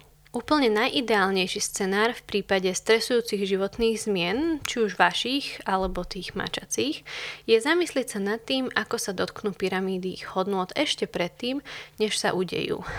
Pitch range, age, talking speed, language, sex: 190-245 Hz, 20-39, 135 wpm, Slovak, female